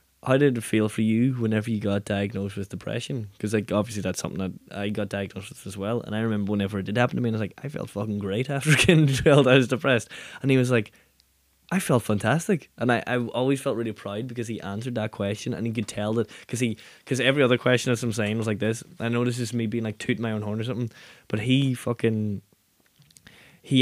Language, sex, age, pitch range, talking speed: English, male, 10-29, 105-125 Hz, 250 wpm